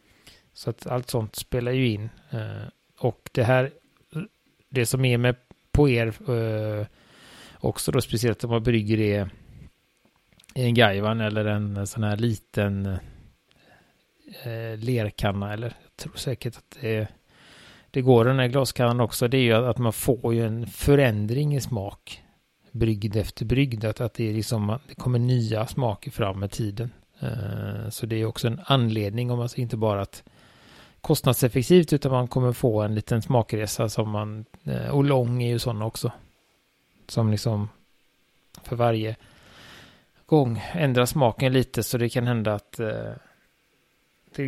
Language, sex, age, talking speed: Swedish, male, 30-49, 150 wpm